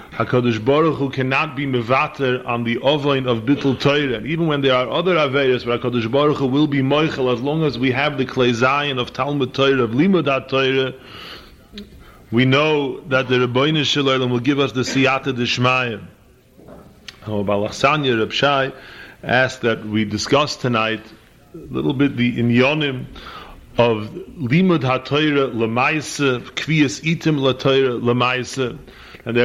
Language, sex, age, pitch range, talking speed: English, male, 30-49, 120-145 Hz, 145 wpm